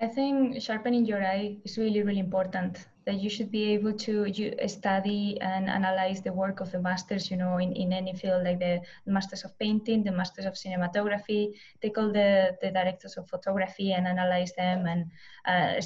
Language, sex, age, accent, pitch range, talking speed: English, female, 20-39, Spanish, 185-210 Hz, 190 wpm